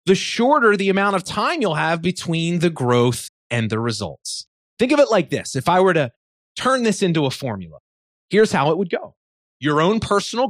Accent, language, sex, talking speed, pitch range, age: American, English, male, 205 wpm, 125-180 Hz, 30-49